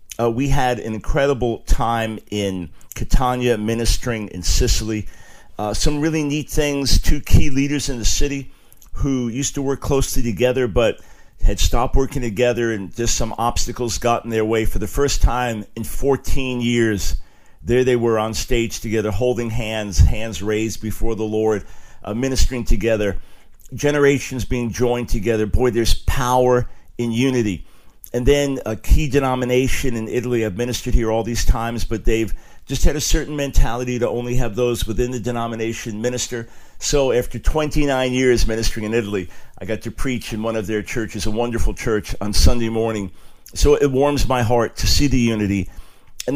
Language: English